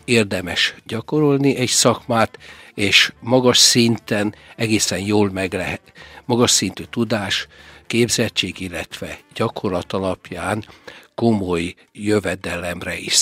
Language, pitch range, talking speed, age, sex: Hungarian, 95-120 Hz, 95 wpm, 60-79, male